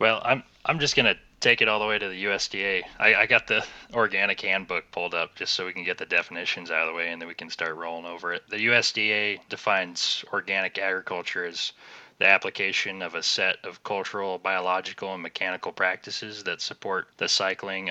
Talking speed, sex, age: 210 wpm, male, 20-39